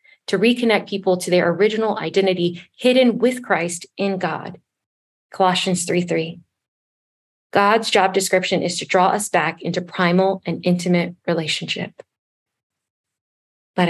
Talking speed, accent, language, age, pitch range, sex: 120 wpm, American, English, 20-39, 175-200 Hz, female